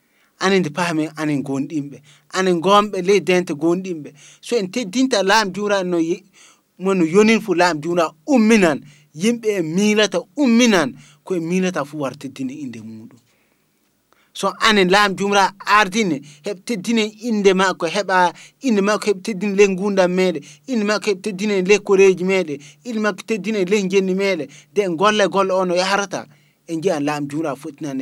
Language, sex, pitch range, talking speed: English, male, 150-200 Hz, 165 wpm